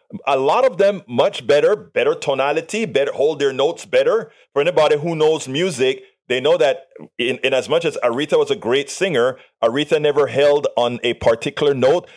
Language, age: English, 30-49